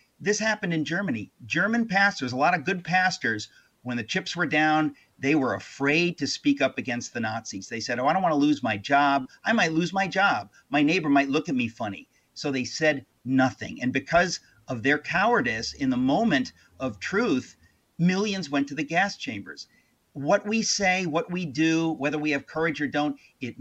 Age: 50-69